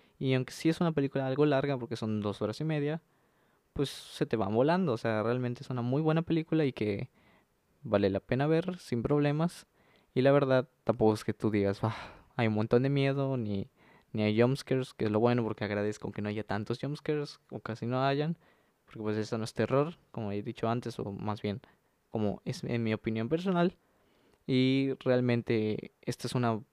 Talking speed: 205 wpm